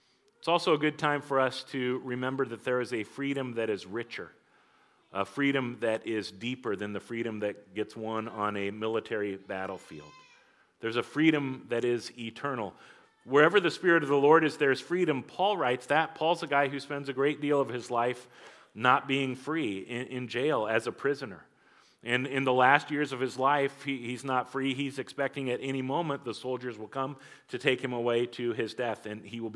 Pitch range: 120-150 Hz